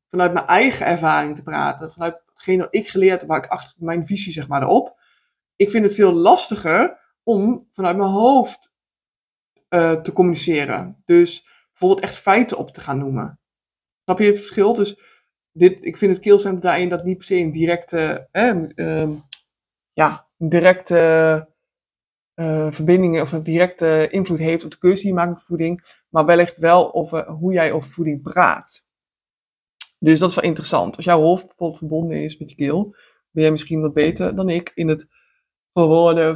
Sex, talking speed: male, 180 wpm